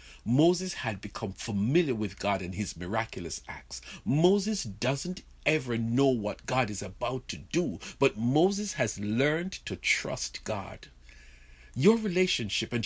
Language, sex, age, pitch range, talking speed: English, male, 50-69, 100-145 Hz, 140 wpm